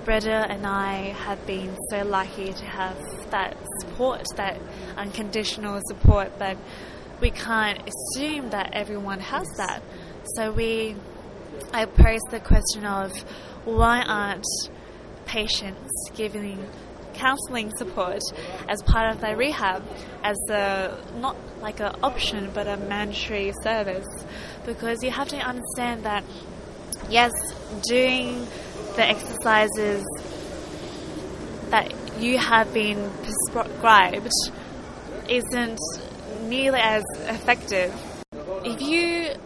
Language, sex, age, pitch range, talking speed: English, female, 20-39, 200-230 Hz, 110 wpm